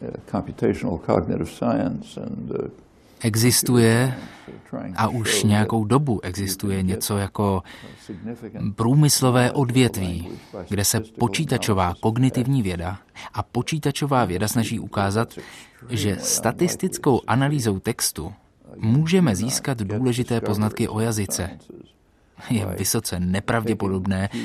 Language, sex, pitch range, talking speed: Czech, male, 100-125 Hz, 80 wpm